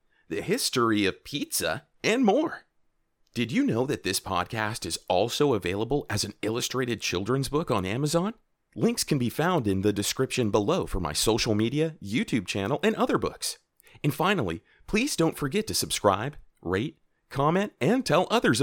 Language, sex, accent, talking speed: English, male, American, 165 wpm